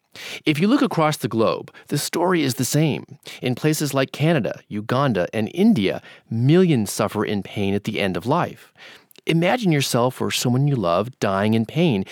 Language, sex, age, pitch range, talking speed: English, male, 30-49, 110-160 Hz, 180 wpm